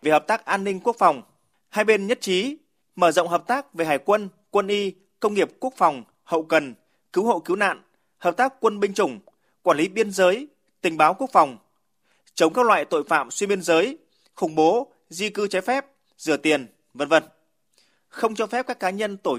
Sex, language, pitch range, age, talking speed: male, Vietnamese, 160-220 Hz, 20-39, 210 wpm